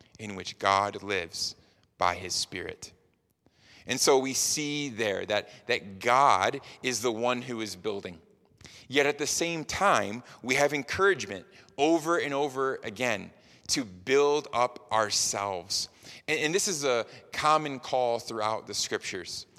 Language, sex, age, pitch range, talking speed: English, male, 30-49, 110-150 Hz, 145 wpm